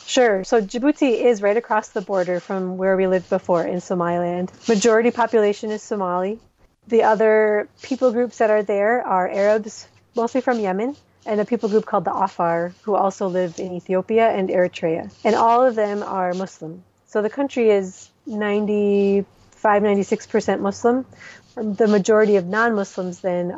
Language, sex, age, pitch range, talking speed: English, female, 30-49, 185-225 Hz, 160 wpm